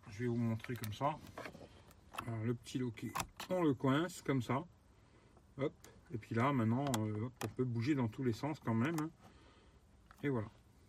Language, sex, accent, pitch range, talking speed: French, male, French, 110-155 Hz, 180 wpm